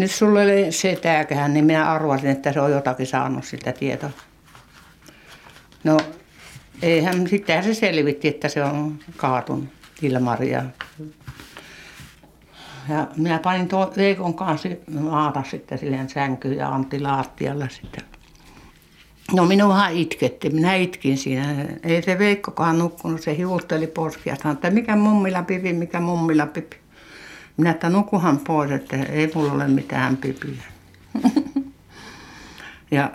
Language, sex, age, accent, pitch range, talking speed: Finnish, female, 60-79, native, 135-175 Hz, 125 wpm